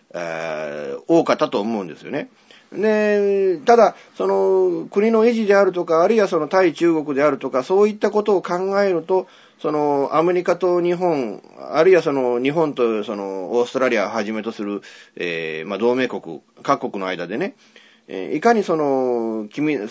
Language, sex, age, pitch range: Japanese, male, 30-49, 115-185 Hz